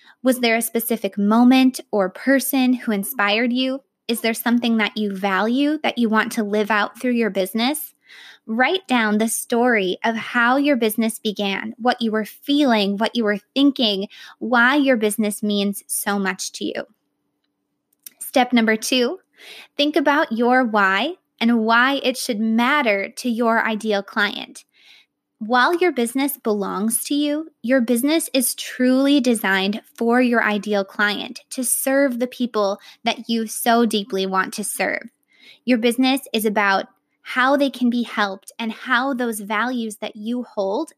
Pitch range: 210-260 Hz